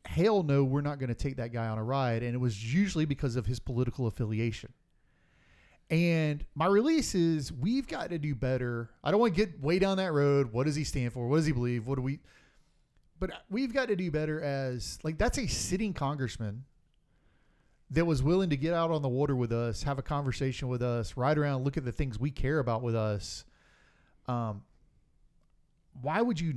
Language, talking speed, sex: English, 210 wpm, male